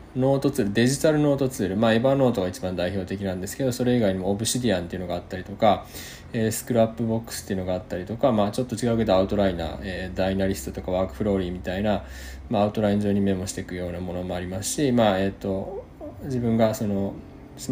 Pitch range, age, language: 95-125 Hz, 20-39, Japanese